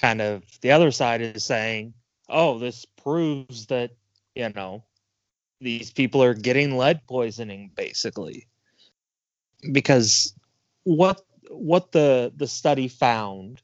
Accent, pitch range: American, 115-140 Hz